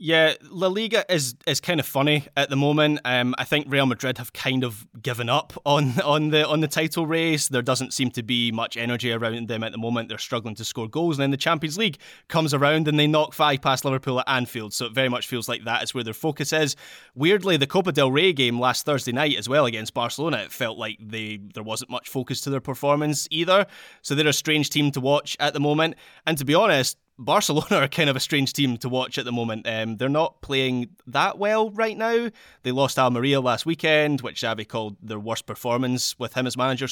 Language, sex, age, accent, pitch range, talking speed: English, male, 20-39, British, 120-150 Hz, 240 wpm